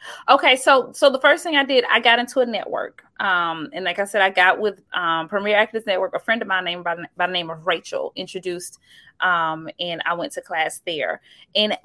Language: English